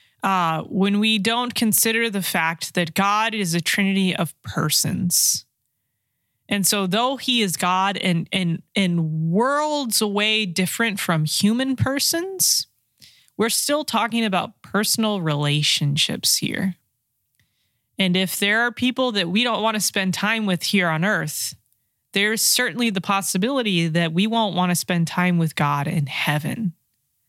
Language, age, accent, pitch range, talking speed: English, 20-39, American, 160-210 Hz, 145 wpm